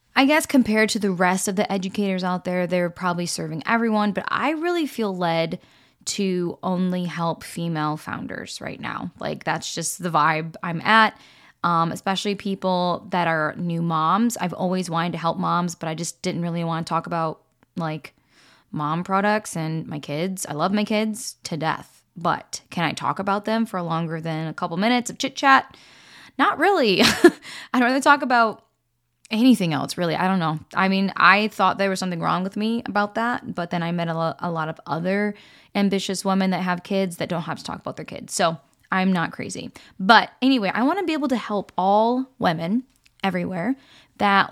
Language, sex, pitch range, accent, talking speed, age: English, female, 170-215 Hz, American, 200 wpm, 10-29